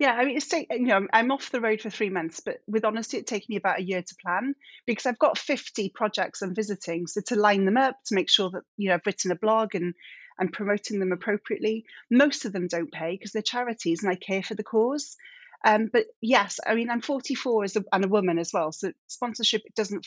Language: English